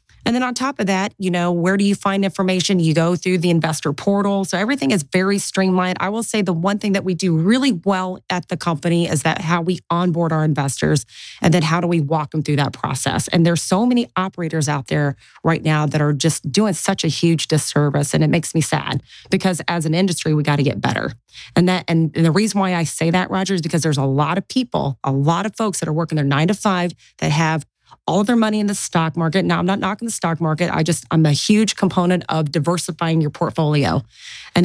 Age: 30-49